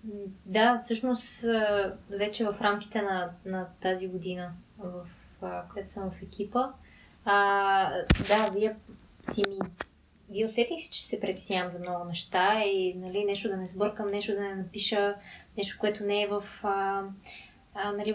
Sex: female